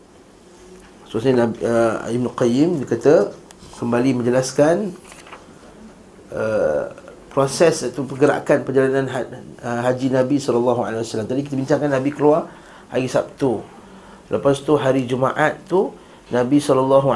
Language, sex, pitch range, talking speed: Malay, male, 120-140 Hz, 115 wpm